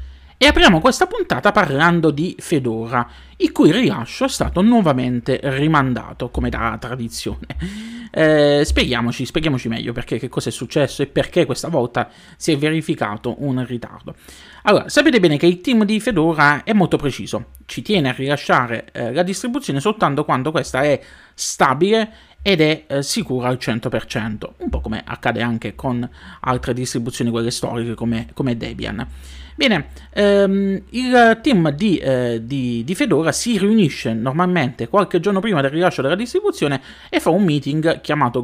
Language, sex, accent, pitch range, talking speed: Italian, male, native, 130-180 Hz, 160 wpm